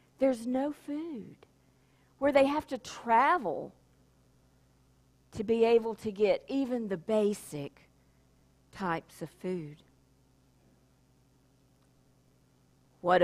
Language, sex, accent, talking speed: English, female, American, 90 wpm